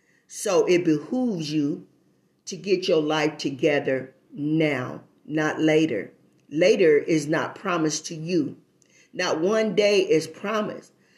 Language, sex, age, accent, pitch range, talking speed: English, female, 40-59, American, 160-220 Hz, 125 wpm